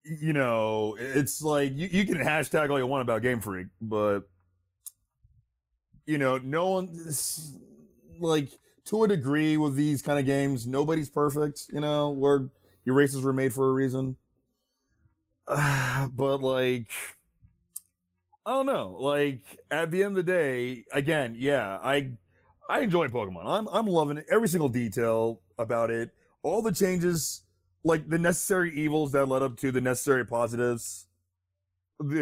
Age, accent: 30-49, American